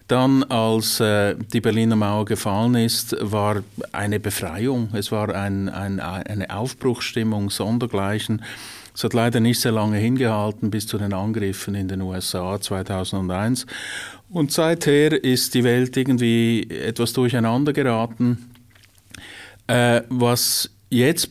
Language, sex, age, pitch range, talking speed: German, male, 50-69, 100-120 Hz, 130 wpm